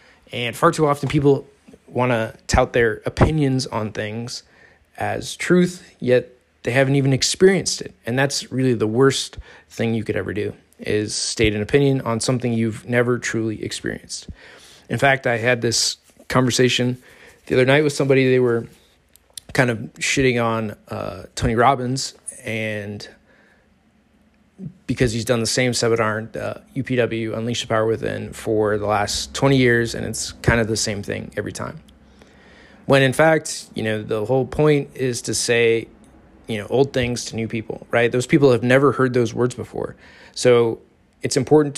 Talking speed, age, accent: 170 wpm, 20-39, American